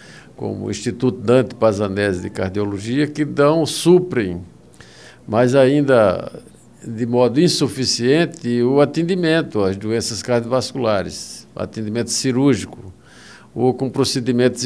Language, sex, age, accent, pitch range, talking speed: Portuguese, male, 50-69, Brazilian, 110-145 Hz, 100 wpm